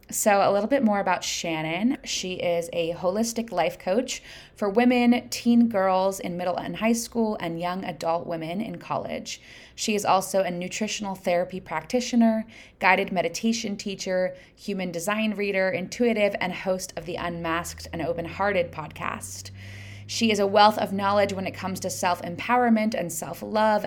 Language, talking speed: English, 160 wpm